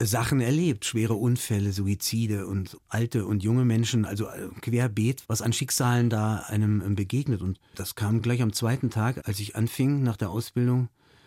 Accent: German